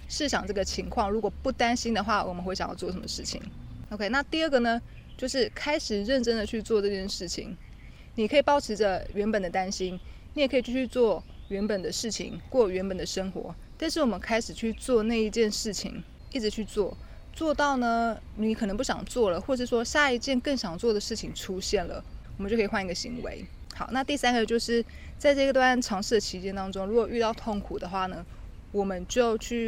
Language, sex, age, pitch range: Chinese, female, 20-39, 195-240 Hz